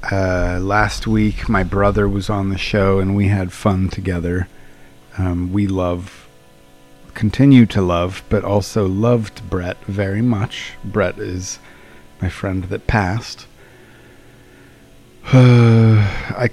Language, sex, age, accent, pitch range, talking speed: English, male, 40-59, American, 90-110 Hz, 125 wpm